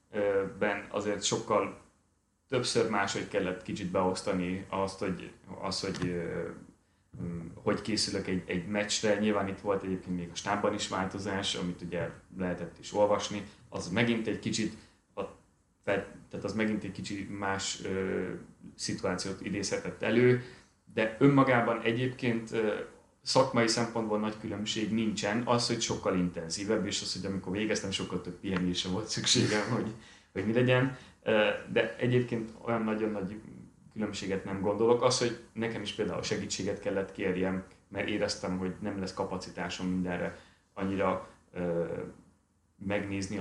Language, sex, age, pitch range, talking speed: Hungarian, male, 30-49, 95-110 Hz, 130 wpm